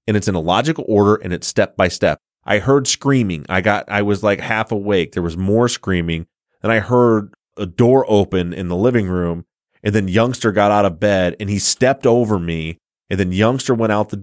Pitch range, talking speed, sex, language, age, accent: 95-120 Hz, 225 wpm, male, English, 30-49, American